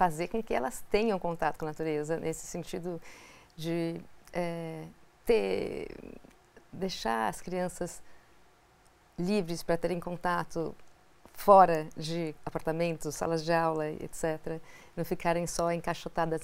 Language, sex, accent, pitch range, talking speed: Portuguese, female, Brazilian, 160-180 Hz, 115 wpm